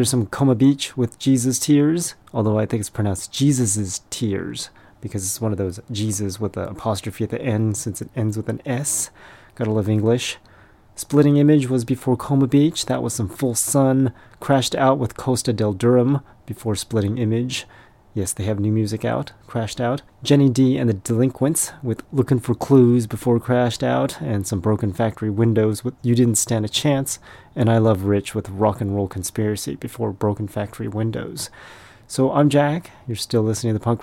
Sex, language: male, English